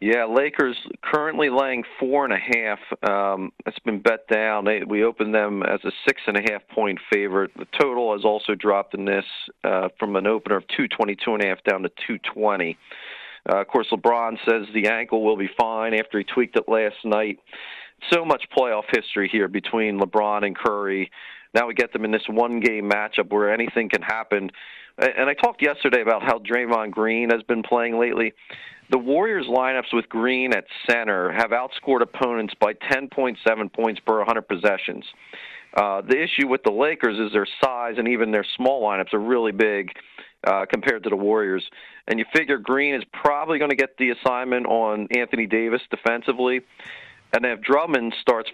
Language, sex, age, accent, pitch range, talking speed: English, male, 40-59, American, 105-120 Hz, 170 wpm